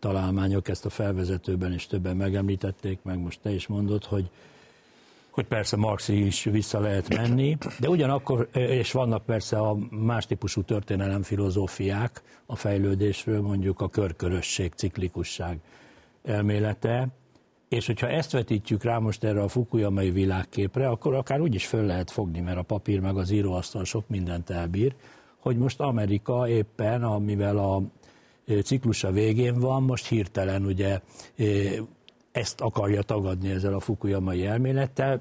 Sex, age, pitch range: male, 60-79, 100-115 Hz